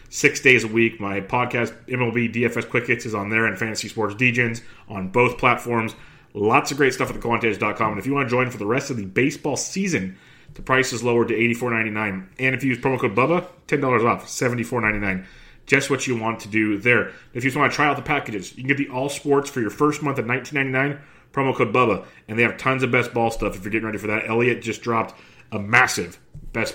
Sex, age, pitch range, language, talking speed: male, 30-49, 110-135 Hz, English, 240 wpm